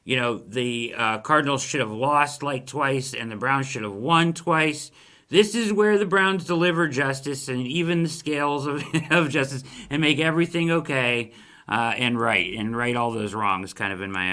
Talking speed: 195 wpm